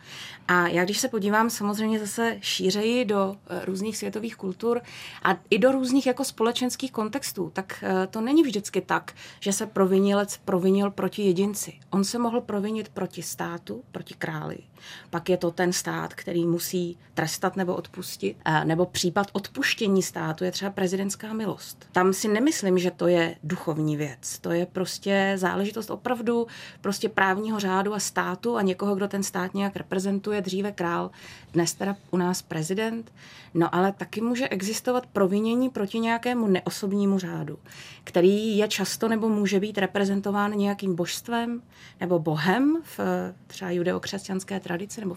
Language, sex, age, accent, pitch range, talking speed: Czech, female, 30-49, native, 180-220 Hz, 150 wpm